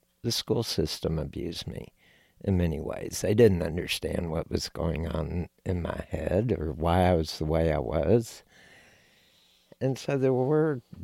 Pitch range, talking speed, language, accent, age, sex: 85-115 Hz, 165 wpm, English, American, 60-79, male